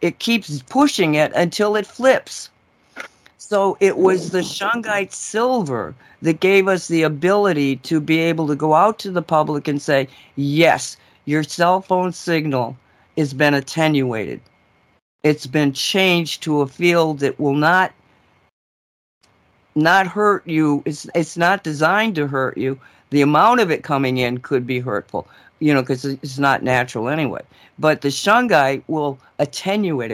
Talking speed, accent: 155 wpm, American